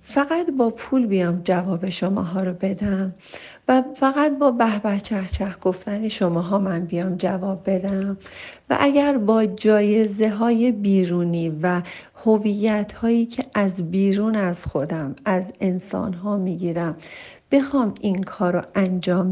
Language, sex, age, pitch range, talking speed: Persian, female, 40-59, 185-230 Hz, 135 wpm